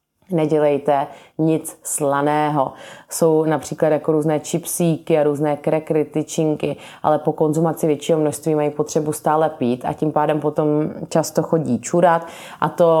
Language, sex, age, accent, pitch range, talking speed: Czech, female, 30-49, native, 145-160 Hz, 140 wpm